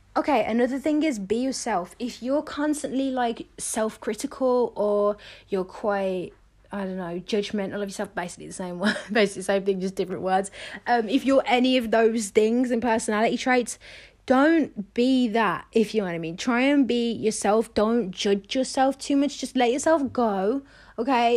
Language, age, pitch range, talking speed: English, 20-39, 205-260 Hz, 180 wpm